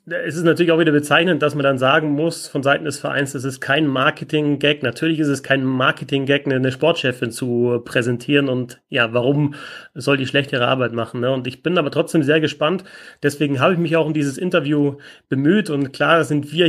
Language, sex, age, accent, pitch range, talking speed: German, male, 30-49, German, 140-160 Hz, 210 wpm